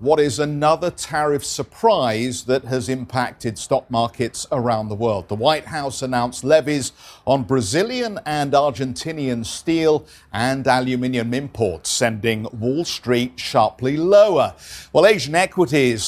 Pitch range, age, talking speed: 120-150 Hz, 50-69, 125 wpm